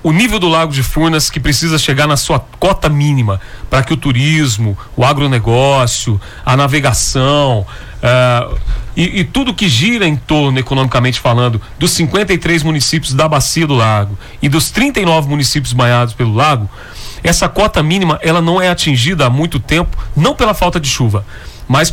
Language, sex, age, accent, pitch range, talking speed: Portuguese, male, 40-59, Brazilian, 130-170 Hz, 160 wpm